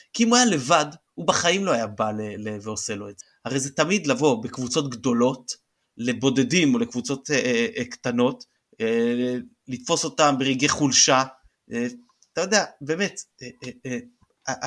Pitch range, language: 120-155 Hz, Hebrew